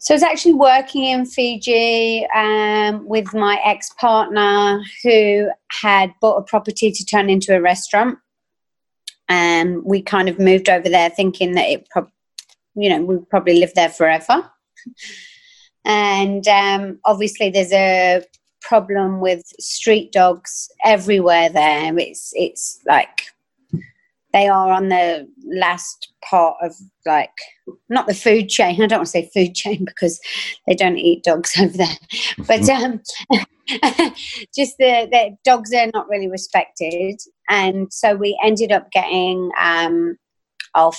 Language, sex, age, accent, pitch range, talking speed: English, female, 30-49, British, 185-225 Hz, 145 wpm